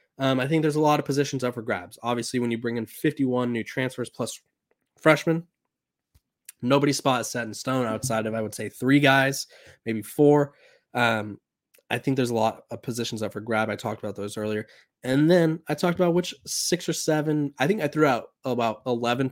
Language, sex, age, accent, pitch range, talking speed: English, male, 20-39, American, 110-135 Hz, 210 wpm